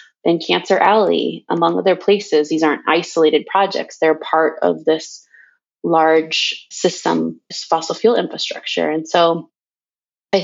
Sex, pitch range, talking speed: female, 160-190 Hz, 125 wpm